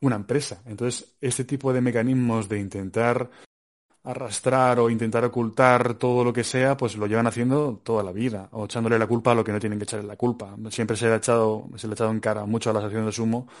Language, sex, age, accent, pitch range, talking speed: Spanish, male, 20-39, Spanish, 105-120 Hz, 225 wpm